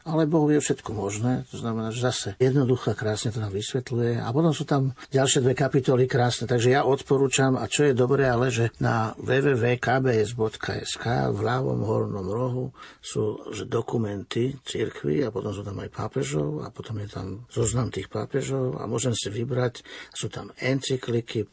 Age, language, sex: 50-69, Slovak, male